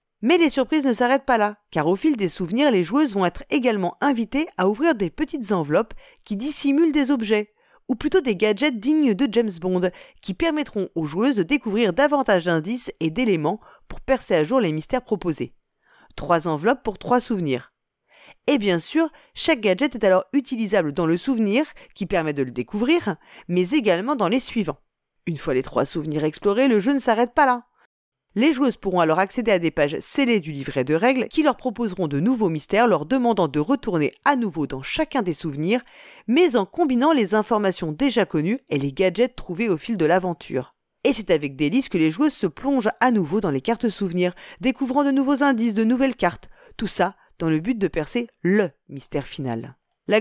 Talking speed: 200 wpm